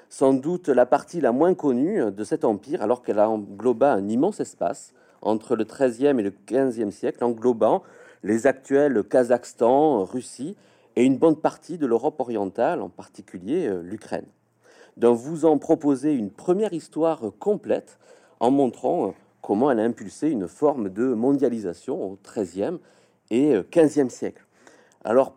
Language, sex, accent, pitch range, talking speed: French, male, French, 115-165 Hz, 150 wpm